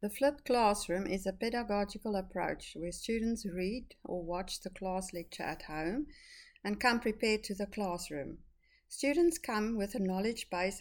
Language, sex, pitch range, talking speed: English, female, 185-230 Hz, 160 wpm